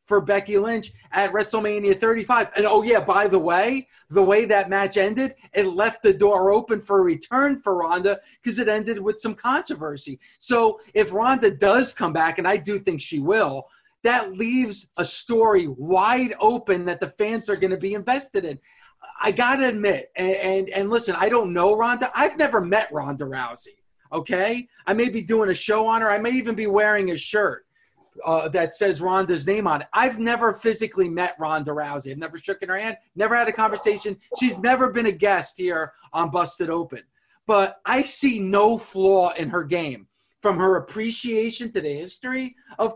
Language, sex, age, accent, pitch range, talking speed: English, male, 30-49, American, 190-235 Hz, 195 wpm